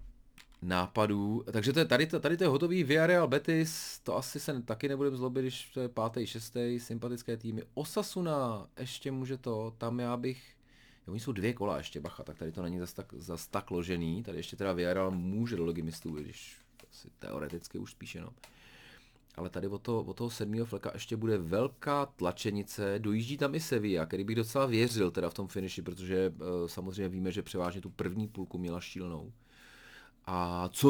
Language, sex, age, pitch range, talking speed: Czech, male, 30-49, 90-125 Hz, 185 wpm